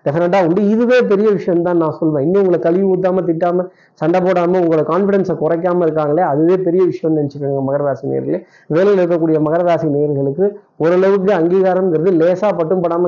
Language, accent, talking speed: Tamil, native, 155 wpm